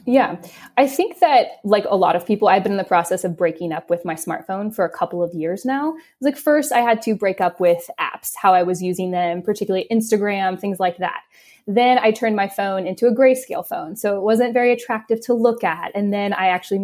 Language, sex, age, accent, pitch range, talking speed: English, female, 20-39, American, 185-250 Hz, 235 wpm